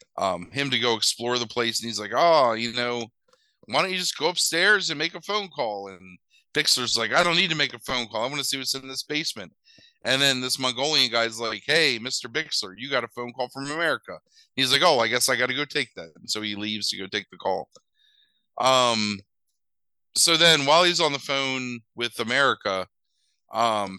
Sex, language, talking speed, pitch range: male, English, 225 wpm, 105-140 Hz